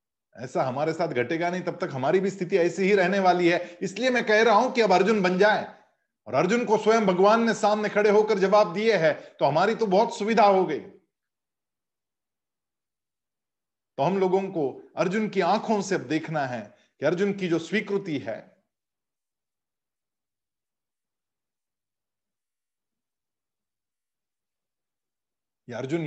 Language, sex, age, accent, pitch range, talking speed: Hindi, male, 50-69, native, 185-225 Hz, 145 wpm